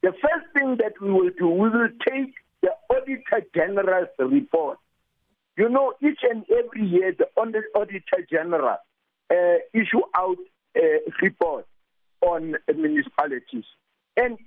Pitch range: 195-295 Hz